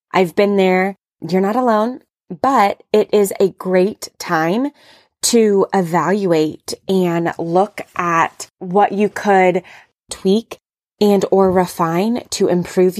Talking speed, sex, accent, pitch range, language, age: 120 wpm, female, American, 180-215 Hz, English, 20-39